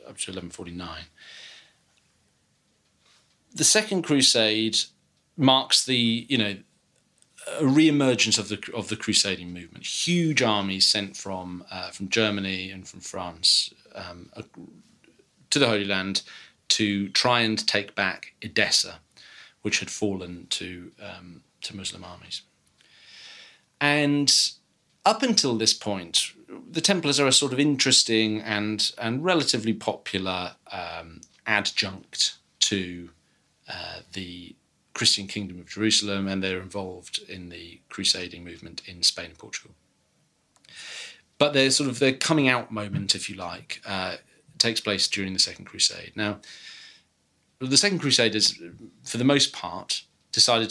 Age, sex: 40-59, male